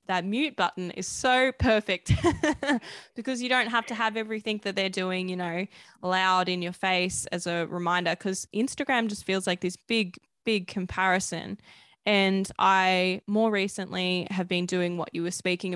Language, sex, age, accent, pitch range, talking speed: English, female, 10-29, Australian, 185-215 Hz, 170 wpm